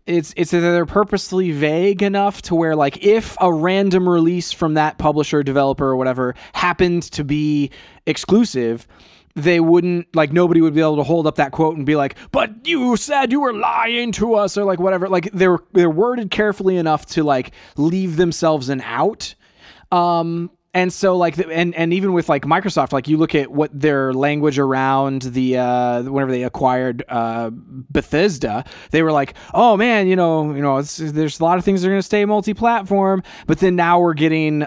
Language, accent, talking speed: English, American, 195 wpm